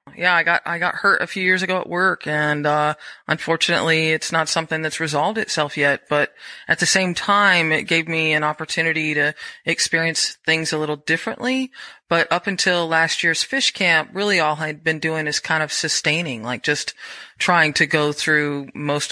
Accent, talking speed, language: American, 190 wpm, English